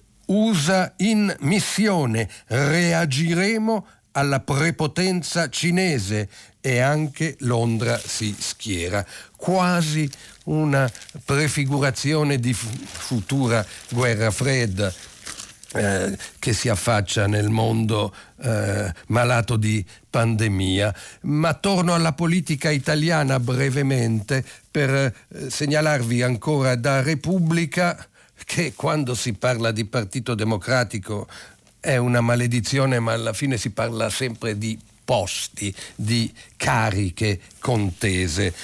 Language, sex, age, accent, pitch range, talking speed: Italian, male, 50-69, native, 110-140 Hz, 95 wpm